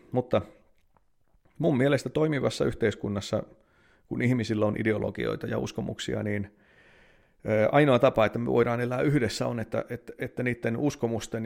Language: Finnish